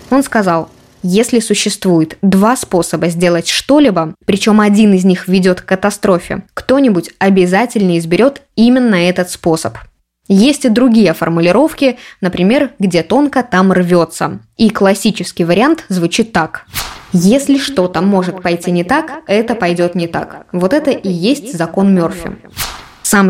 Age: 20-39